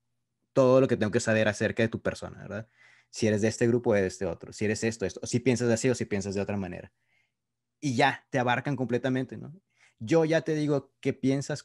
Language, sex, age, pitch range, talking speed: Spanish, male, 20-39, 105-125 Hz, 230 wpm